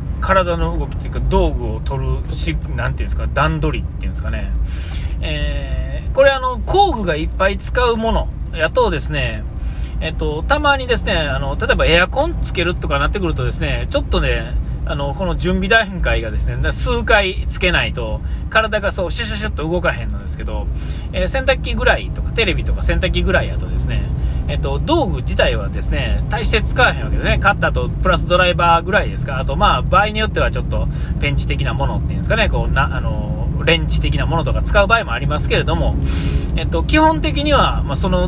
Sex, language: male, Japanese